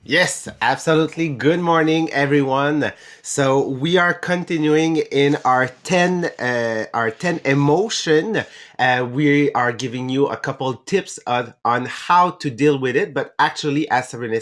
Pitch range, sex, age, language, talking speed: 140-165 Hz, male, 30-49, English, 150 wpm